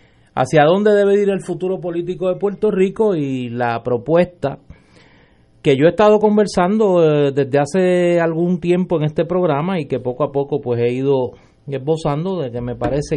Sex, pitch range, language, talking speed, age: male, 120-150 Hz, Spanish, 180 wpm, 30-49